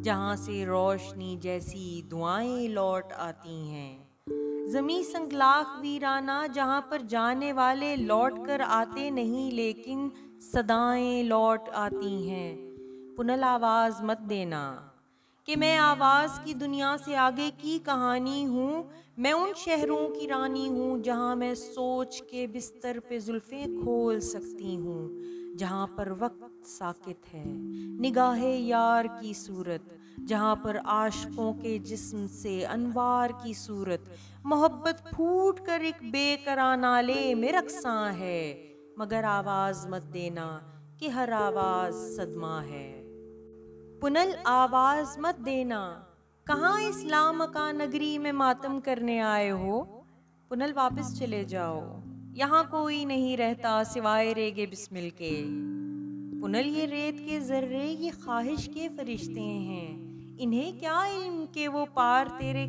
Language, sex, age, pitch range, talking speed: Urdu, female, 30-49, 175-270 Hz, 125 wpm